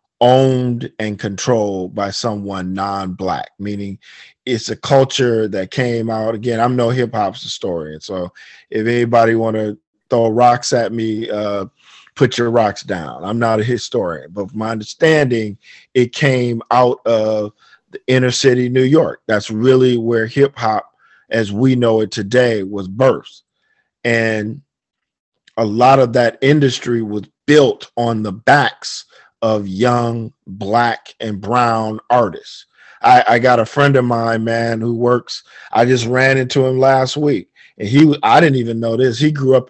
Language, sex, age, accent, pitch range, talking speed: English, male, 40-59, American, 115-140 Hz, 160 wpm